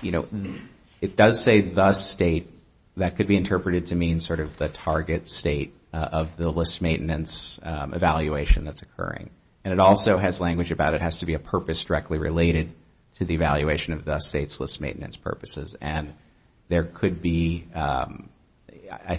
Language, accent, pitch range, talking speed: English, American, 80-95 Hz, 175 wpm